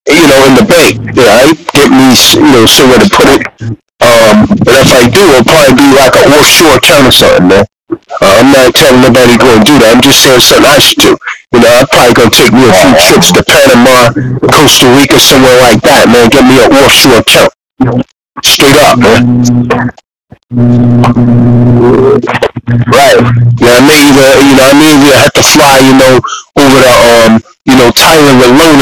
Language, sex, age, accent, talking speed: English, male, 50-69, American, 205 wpm